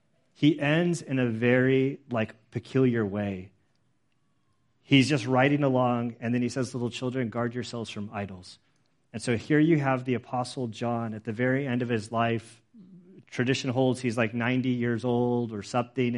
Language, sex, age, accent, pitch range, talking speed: English, male, 30-49, American, 110-130 Hz, 170 wpm